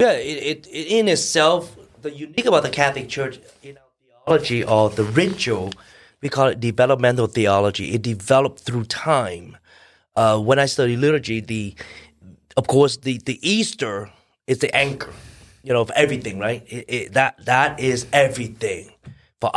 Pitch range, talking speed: 120-150 Hz, 165 wpm